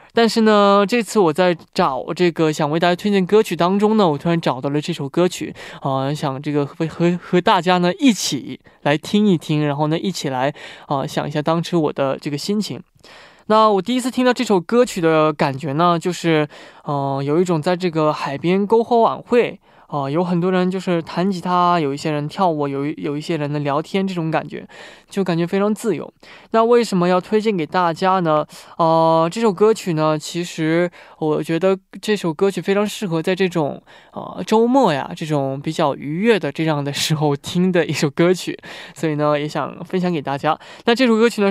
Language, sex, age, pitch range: Korean, male, 20-39, 155-200 Hz